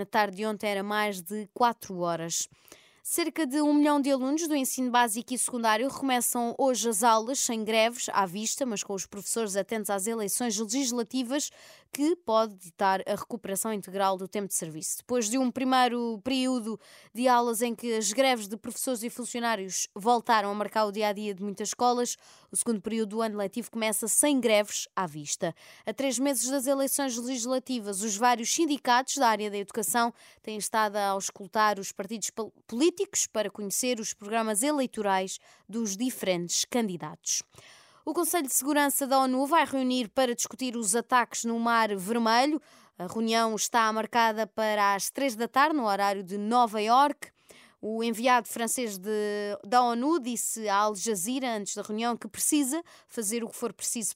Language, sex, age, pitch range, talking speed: Portuguese, female, 20-39, 205-255 Hz, 170 wpm